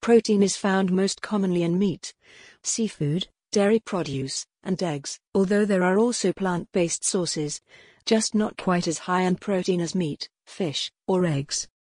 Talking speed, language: 155 wpm, English